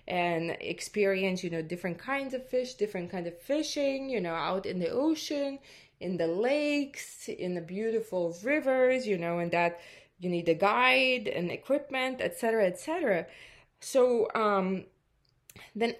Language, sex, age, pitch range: English, female, 20-39, 180-250 Hz